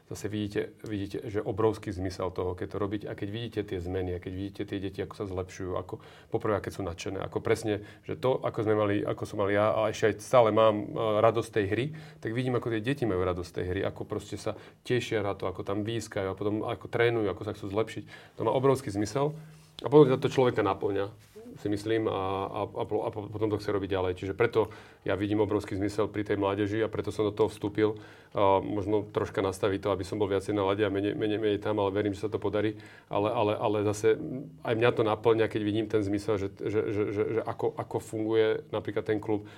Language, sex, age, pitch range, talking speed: Slovak, male, 30-49, 105-115 Hz, 225 wpm